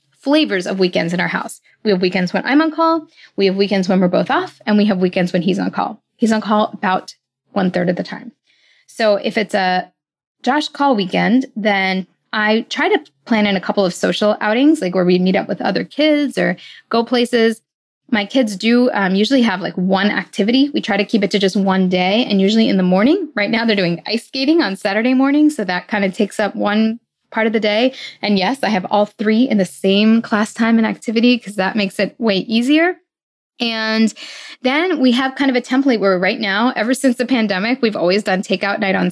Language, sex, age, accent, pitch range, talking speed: English, female, 10-29, American, 195-255 Hz, 230 wpm